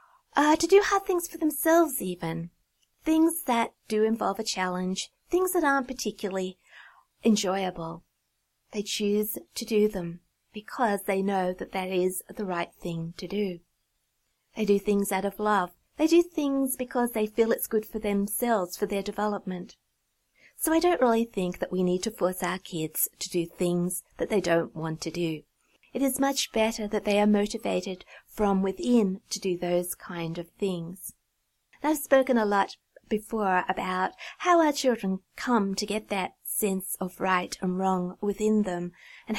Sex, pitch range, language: female, 185-230 Hz, English